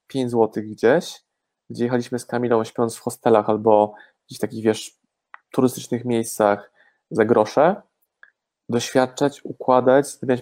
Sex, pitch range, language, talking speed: male, 115-135 Hz, Polish, 125 wpm